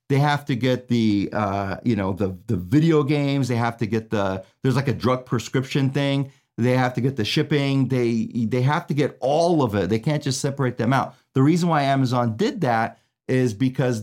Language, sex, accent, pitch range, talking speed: English, male, American, 120-145 Hz, 220 wpm